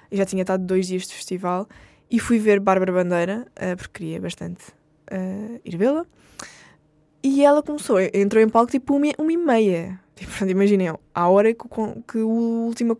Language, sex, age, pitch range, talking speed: Portuguese, female, 10-29, 185-225 Hz, 180 wpm